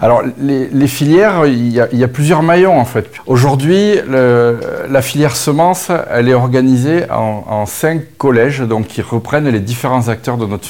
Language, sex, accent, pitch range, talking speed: French, male, French, 105-135 Hz, 190 wpm